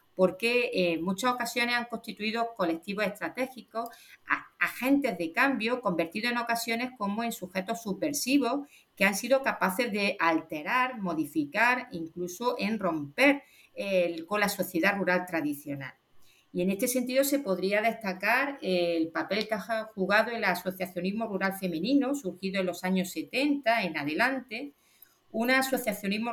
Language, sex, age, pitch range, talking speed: Spanish, female, 40-59, 175-235 Hz, 130 wpm